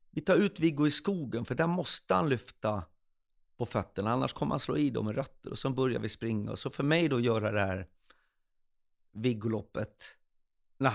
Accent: native